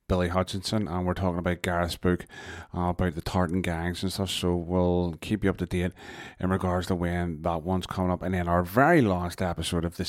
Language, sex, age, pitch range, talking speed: English, male, 30-49, 90-100 Hz, 225 wpm